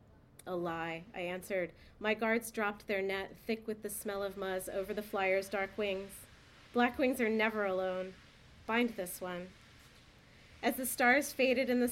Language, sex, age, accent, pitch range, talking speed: English, female, 30-49, American, 190-230 Hz, 170 wpm